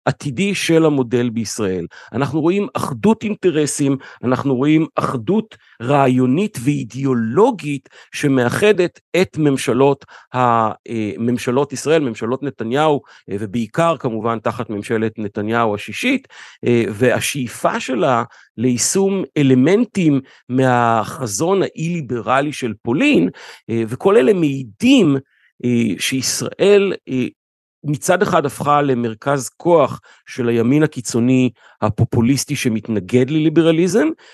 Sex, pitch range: male, 120-160 Hz